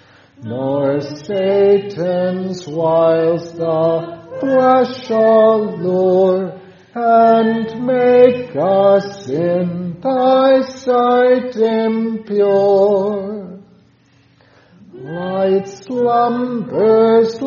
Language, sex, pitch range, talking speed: English, male, 175-230 Hz, 50 wpm